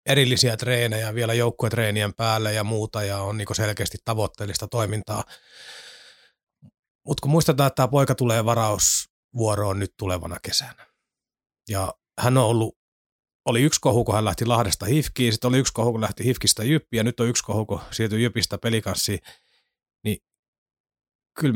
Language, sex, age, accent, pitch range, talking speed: Finnish, male, 30-49, native, 105-125 Hz, 145 wpm